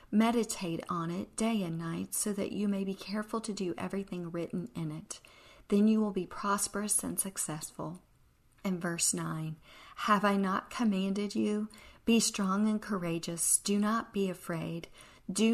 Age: 40-59